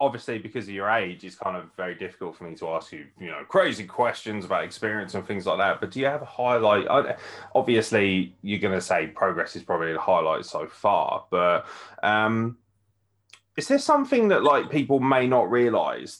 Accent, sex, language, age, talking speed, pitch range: British, male, English, 20-39, 200 wpm, 95-120 Hz